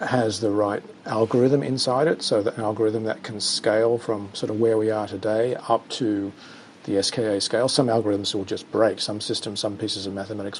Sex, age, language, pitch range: male, 40-59, English, 105-135 Hz